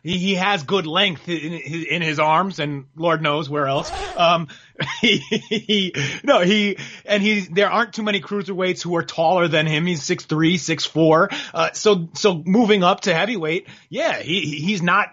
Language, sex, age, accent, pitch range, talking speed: English, male, 30-49, American, 170-210 Hz, 190 wpm